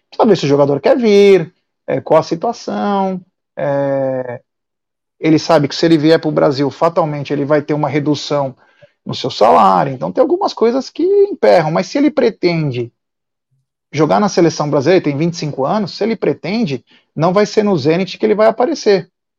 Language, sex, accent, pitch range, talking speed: Portuguese, male, Brazilian, 145-210 Hz, 185 wpm